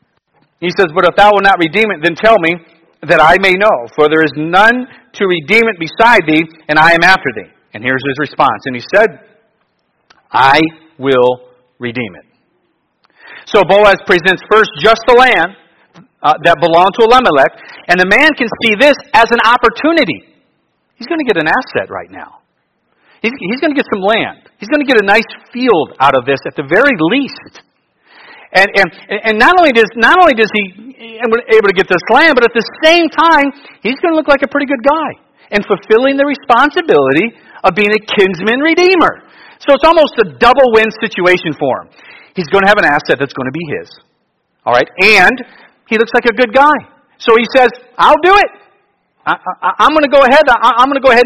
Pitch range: 185-275 Hz